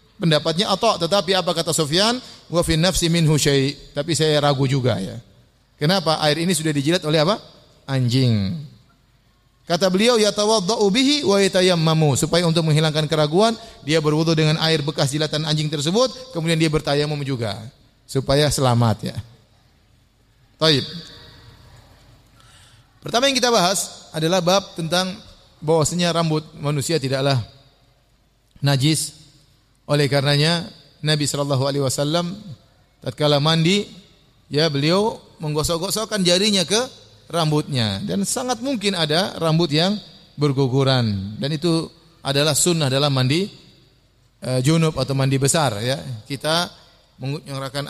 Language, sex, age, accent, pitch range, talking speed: Indonesian, male, 30-49, native, 135-175 Hz, 115 wpm